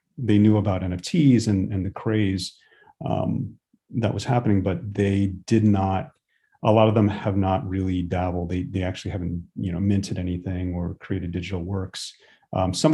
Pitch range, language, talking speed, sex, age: 90-105 Hz, English, 175 wpm, male, 30-49